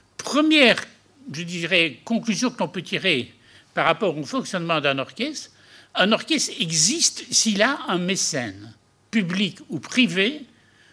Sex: male